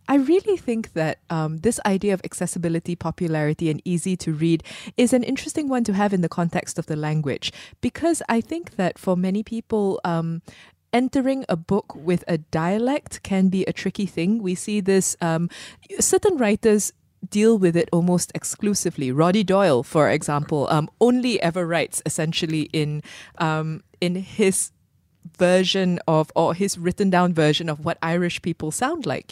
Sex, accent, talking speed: female, Malaysian, 170 wpm